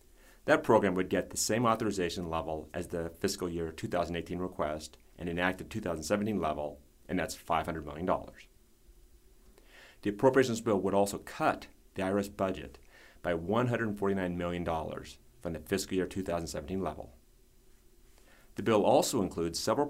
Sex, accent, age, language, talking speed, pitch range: male, American, 40-59, English, 140 wpm, 80-105 Hz